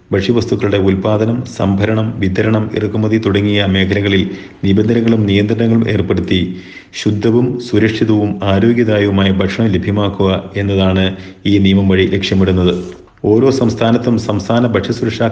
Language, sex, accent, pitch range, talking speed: Malayalam, male, native, 95-110 Hz, 90 wpm